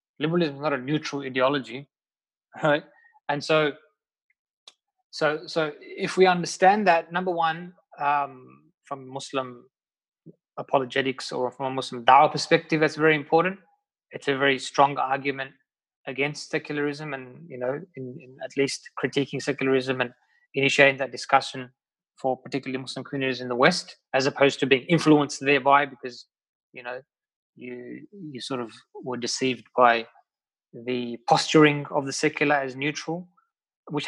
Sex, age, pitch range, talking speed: male, 20-39, 130-155 Hz, 145 wpm